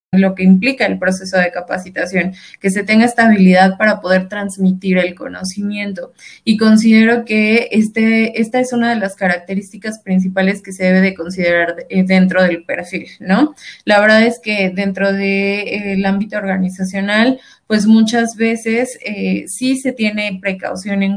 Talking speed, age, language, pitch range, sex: 155 wpm, 20-39, Spanish, 190-220 Hz, female